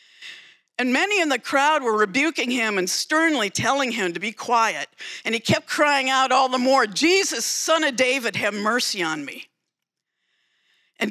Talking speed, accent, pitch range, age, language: 175 wpm, American, 175-260 Hz, 50-69, English